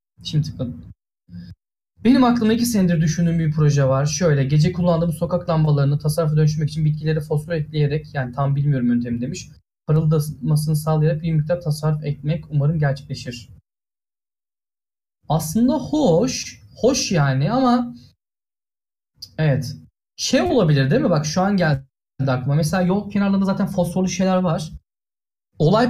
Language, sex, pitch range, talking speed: Turkish, male, 145-205 Hz, 130 wpm